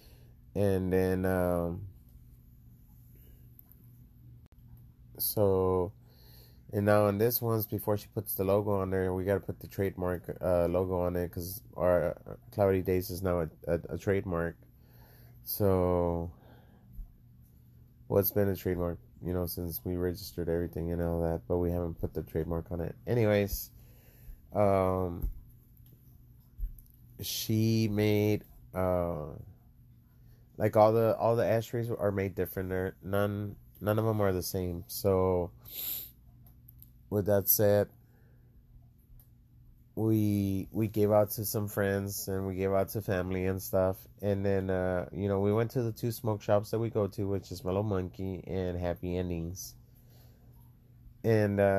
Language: English